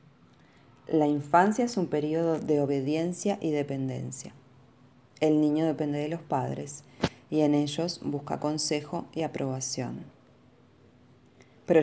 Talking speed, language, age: 115 wpm, Spanish, 20-39